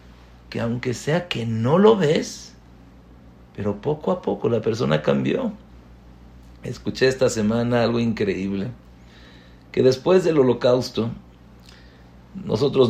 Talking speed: 110 wpm